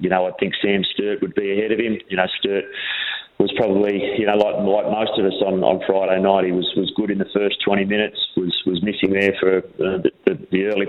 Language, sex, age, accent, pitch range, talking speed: English, male, 30-49, Australian, 95-100 Hz, 255 wpm